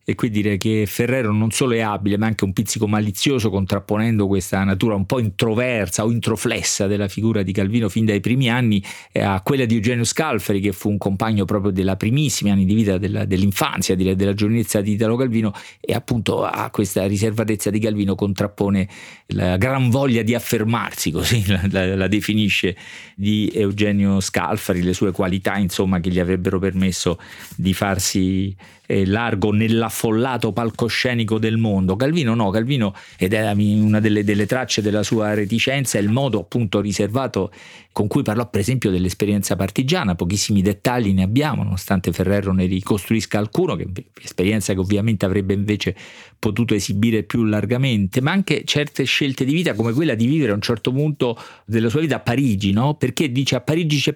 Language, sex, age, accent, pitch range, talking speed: Italian, male, 40-59, native, 100-125 Hz, 175 wpm